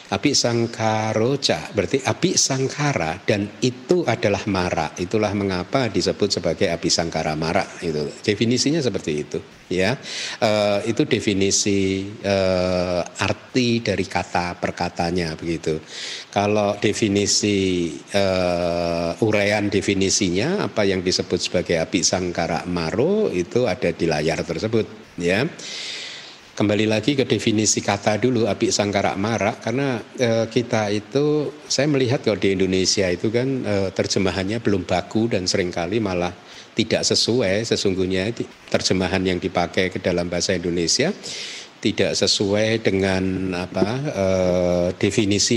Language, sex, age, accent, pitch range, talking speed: Indonesian, male, 50-69, native, 90-110 Hz, 120 wpm